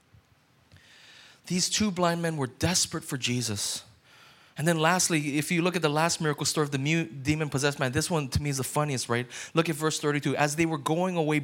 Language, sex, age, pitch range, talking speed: English, male, 20-39, 145-205 Hz, 220 wpm